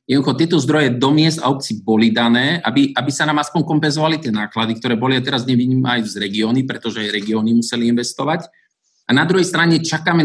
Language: Slovak